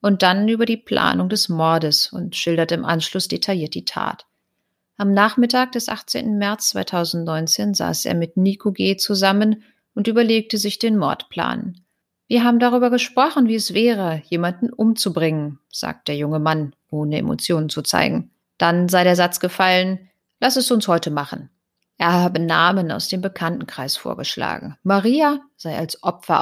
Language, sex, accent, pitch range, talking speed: German, female, German, 165-205 Hz, 155 wpm